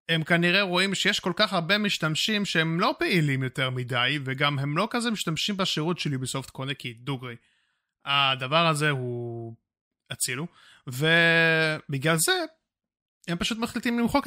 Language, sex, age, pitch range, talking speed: Hebrew, male, 20-39, 135-195 Hz, 140 wpm